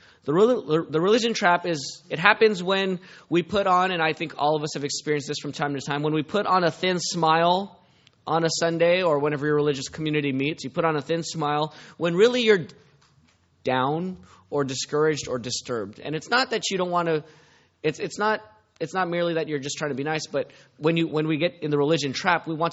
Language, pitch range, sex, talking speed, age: English, 135-175 Hz, male, 225 wpm, 20-39